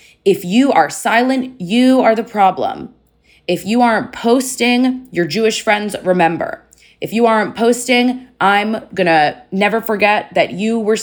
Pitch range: 160-235 Hz